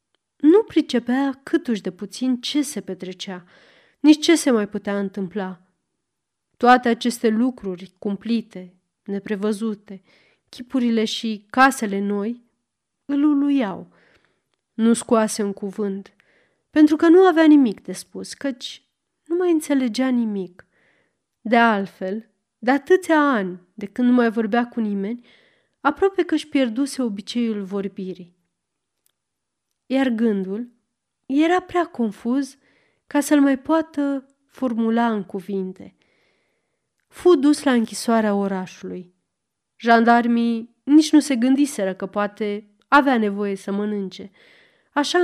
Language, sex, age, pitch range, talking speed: Romanian, female, 30-49, 200-275 Hz, 115 wpm